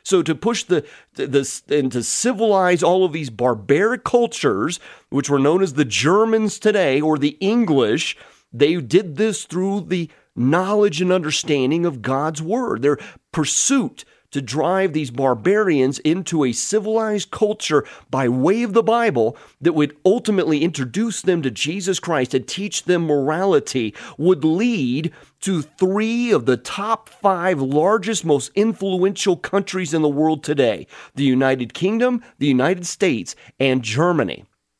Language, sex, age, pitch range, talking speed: English, male, 30-49, 140-200 Hz, 145 wpm